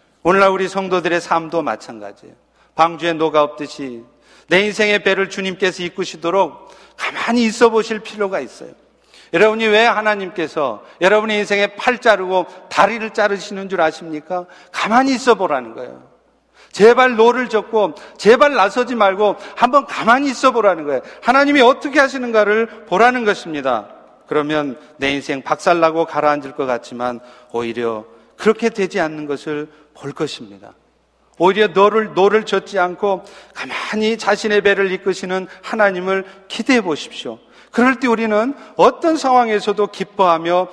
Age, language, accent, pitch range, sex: 40-59, Korean, native, 155-215 Hz, male